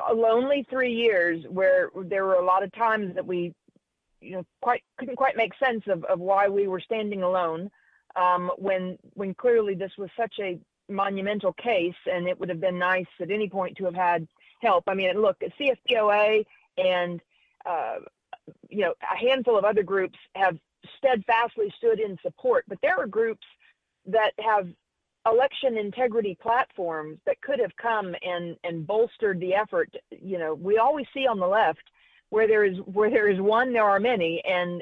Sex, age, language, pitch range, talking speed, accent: female, 40-59, English, 185-230 Hz, 180 wpm, American